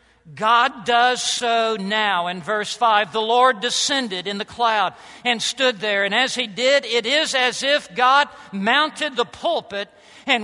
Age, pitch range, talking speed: 50-69, 205-250 Hz, 165 wpm